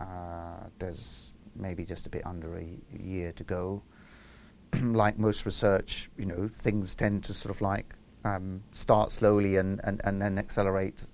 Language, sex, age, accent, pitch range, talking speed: English, male, 30-49, British, 95-110 Hz, 160 wpm